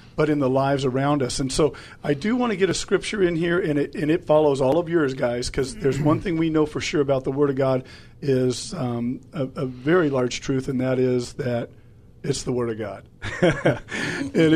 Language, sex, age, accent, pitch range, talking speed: English, male, 50-69, American, 130-165 Hz, 230 wpm